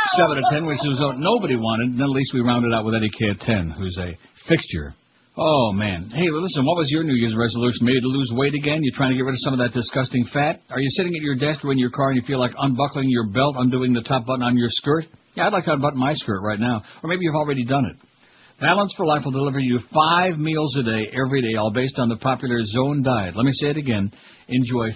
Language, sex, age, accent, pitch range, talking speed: English, male, 60-79, American, 120-145 Hz, 265 wpm